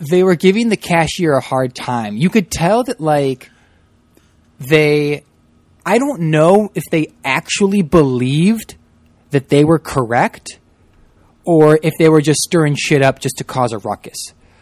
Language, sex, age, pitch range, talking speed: English, male, 20-39, 125-160 Hz, 160 wpm